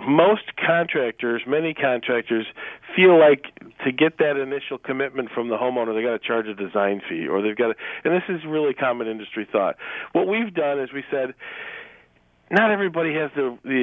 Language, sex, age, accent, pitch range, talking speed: English, male, 40-59, American, 120-155 Hz, 185 wpm